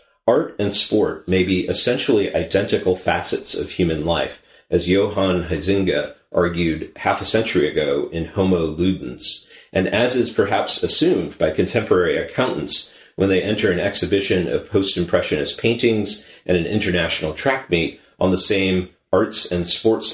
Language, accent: English, American